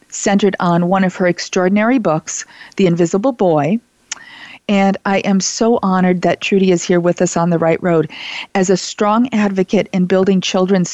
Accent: American